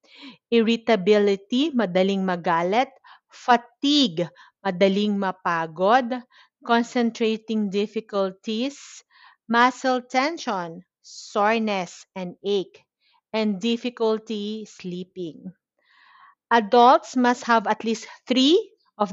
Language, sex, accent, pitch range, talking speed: Filipino, female, native, 205-245 Hz, 70 wpm